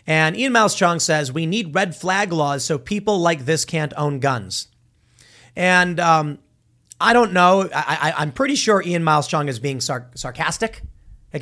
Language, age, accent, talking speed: English, 30-49, American, 185 wpm